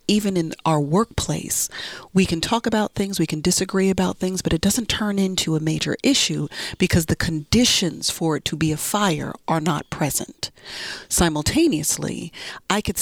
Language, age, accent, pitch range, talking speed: English, 40-59, American, 155-195 Hz, 170 wpm